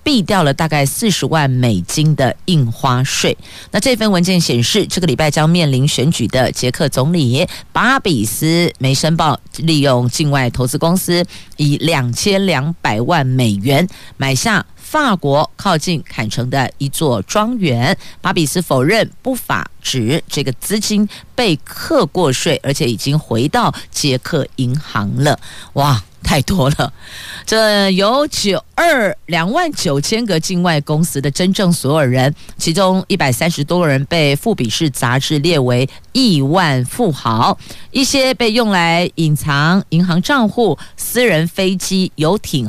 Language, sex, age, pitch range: Chinese, female, 50-69, 135-190 Hz